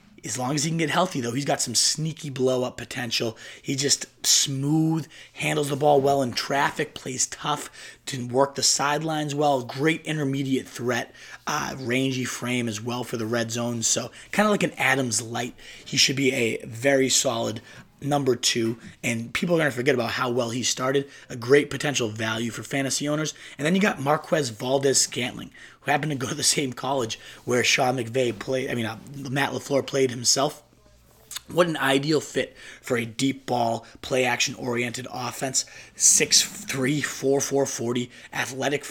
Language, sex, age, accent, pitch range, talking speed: English, male, 30-49, American, 120-145 Hz, 185 wpm